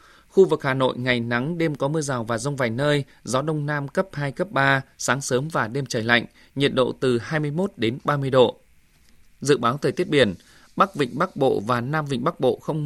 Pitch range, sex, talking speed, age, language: 125-155 Hz, male, 230 wpm, 20-39, Vietnamese